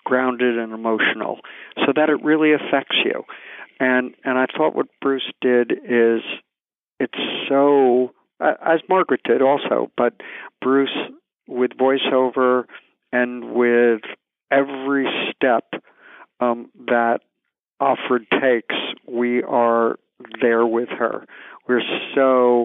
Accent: American